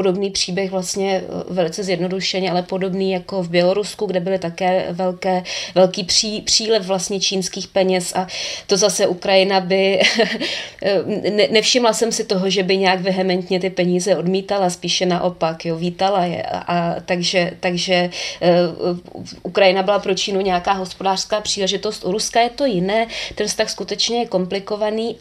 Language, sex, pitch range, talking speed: Czech, female, 185-215 Hz, 150 wpm